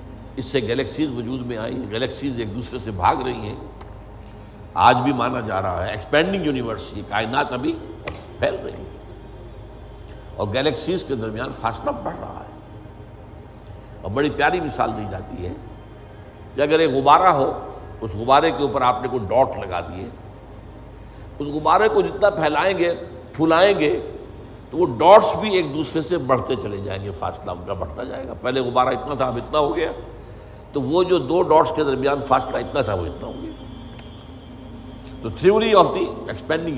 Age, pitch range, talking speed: 60-79, 105-135 Hz, 180 wpm